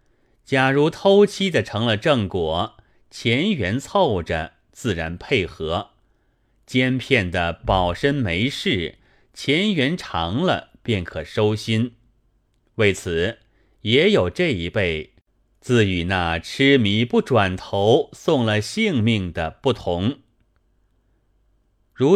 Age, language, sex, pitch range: 30-49, Chinese, male, 95-125 Hz